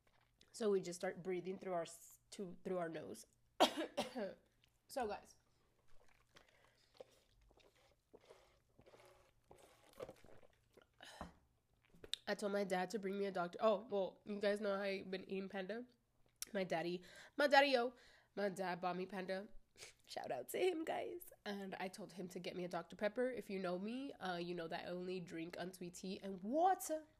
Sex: female